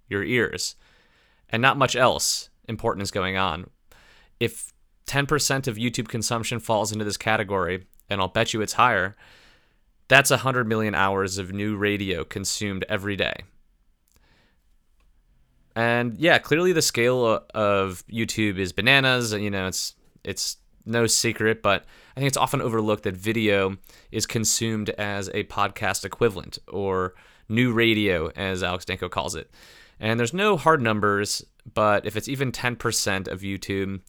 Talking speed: 150 wpm